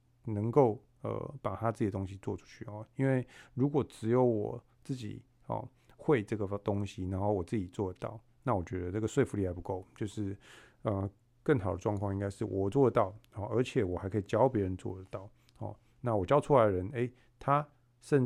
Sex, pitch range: male, 105-125 Hz